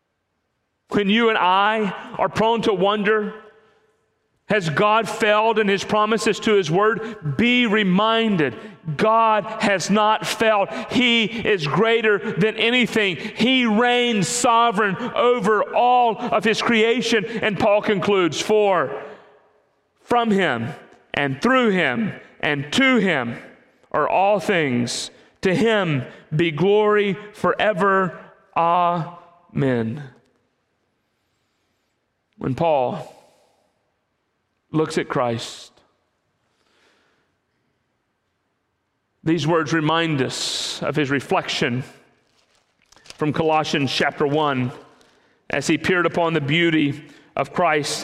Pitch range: 165-215 Hz